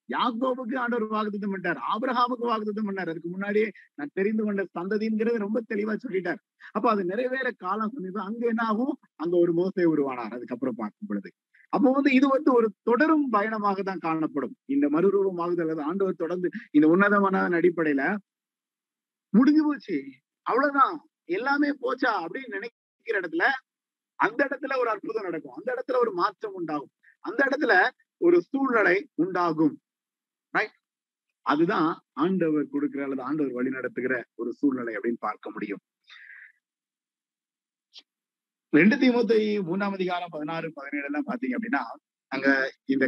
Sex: male